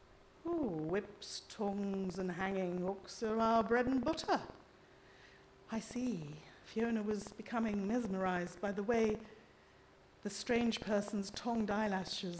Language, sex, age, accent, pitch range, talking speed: English, female, 50-69, British, 200-260 Hz, 115 wpm